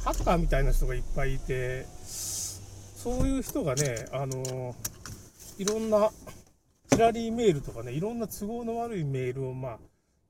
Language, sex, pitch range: Japanese, male, 110-180 Hz